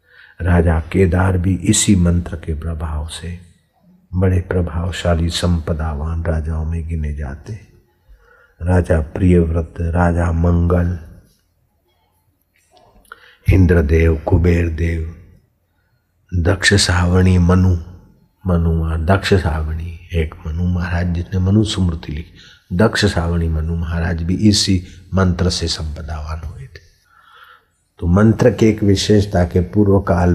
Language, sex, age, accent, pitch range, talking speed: Hindi, male, 50-69, native, 85-95 Hz, 105 wpm